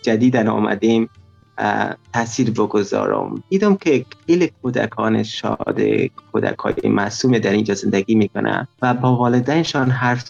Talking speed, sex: 110 wpm, male